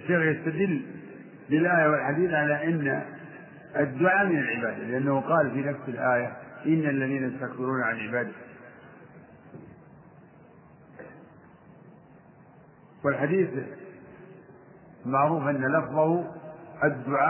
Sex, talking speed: male, 85 wpm